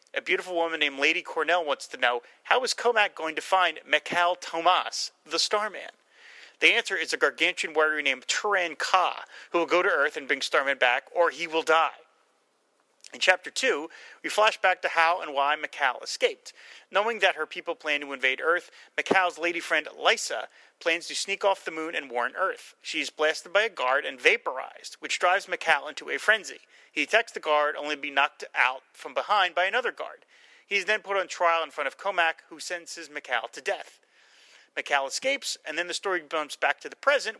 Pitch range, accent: 150-195 Hz, American